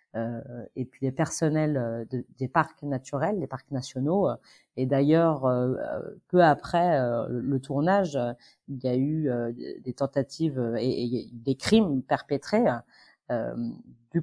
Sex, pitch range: female, 130-160 Hz